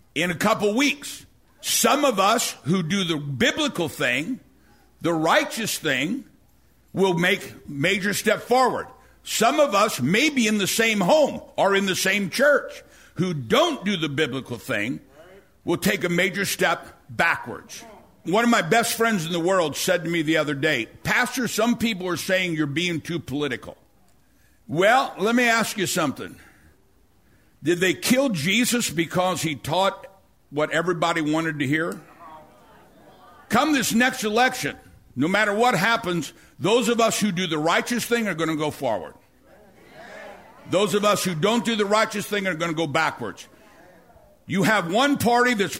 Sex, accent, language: male, American, English